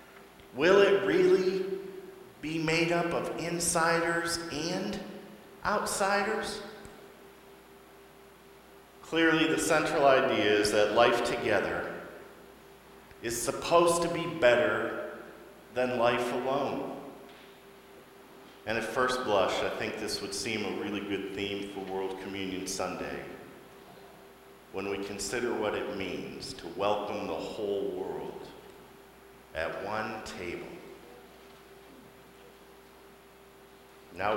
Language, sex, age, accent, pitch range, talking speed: English, male, 50-69, American, 105-175 Hz, 100 wpm